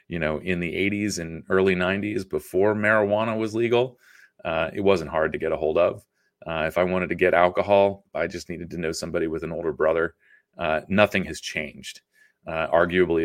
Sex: male